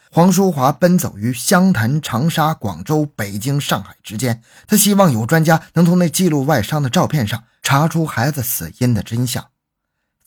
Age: 20-39